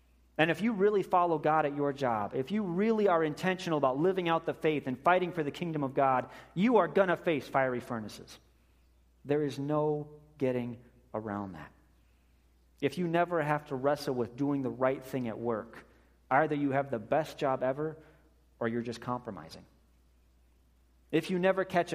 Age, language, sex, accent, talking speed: 30-49, English, male, American, 185 wpm